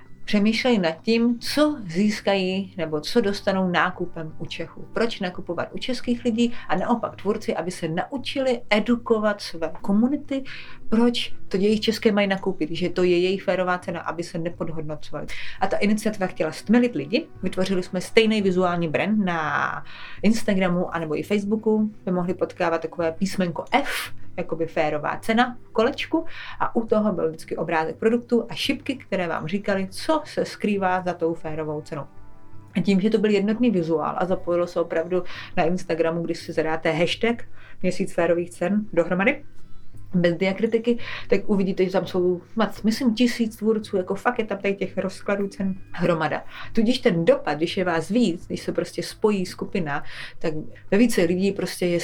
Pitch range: 165-210 Hz